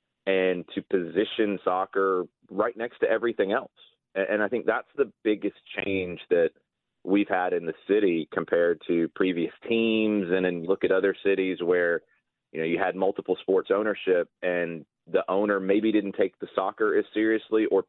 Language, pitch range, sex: English, 90-135 Hz, male